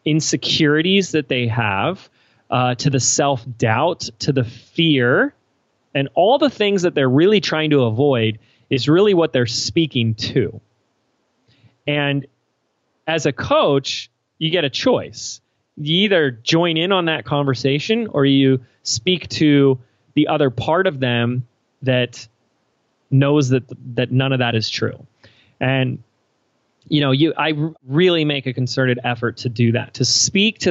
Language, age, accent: English, 30-49, American